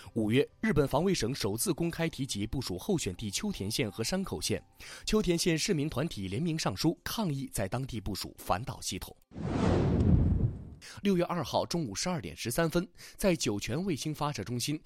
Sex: male